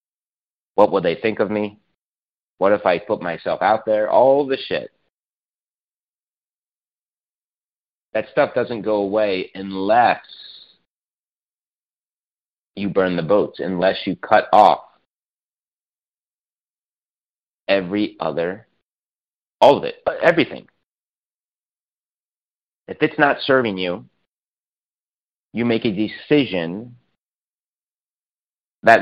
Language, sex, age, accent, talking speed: English, male, 30-49, American, 95 wpm